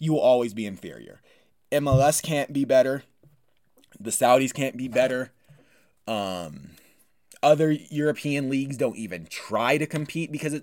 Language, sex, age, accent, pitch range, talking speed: English, male, 20-39, American, 120-150 Hz, 135 wpm